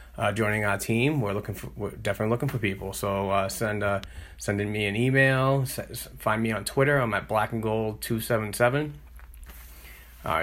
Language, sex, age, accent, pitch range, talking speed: English, male, 30-49, American, 100-120 Hz, 180 wpm